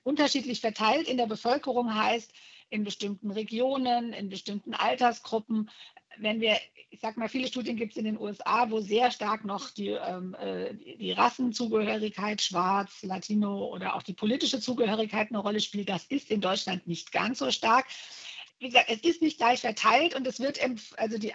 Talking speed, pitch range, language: 170 wpm, 215-255 Hz, German